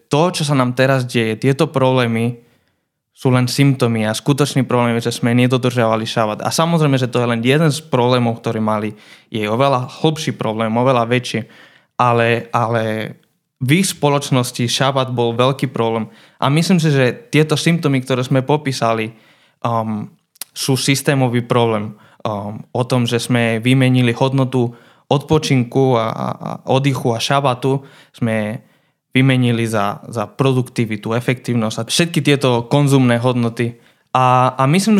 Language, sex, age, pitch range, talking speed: Slovak, male, 20-39, 120-145 Hz, 145 wpm